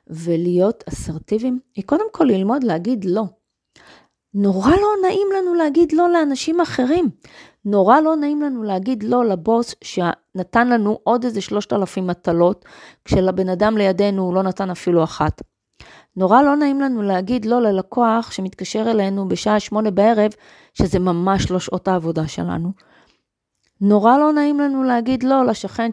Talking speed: 145 wpm